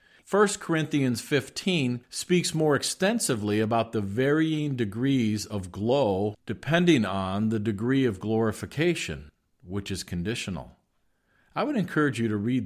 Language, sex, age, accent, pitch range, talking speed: English, male, 50-69, American, 105-135 Hz, 130 wpm